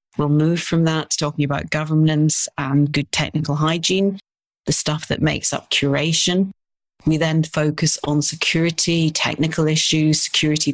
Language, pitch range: English, 145-160 Hz